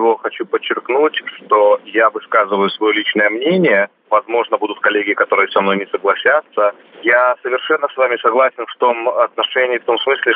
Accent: native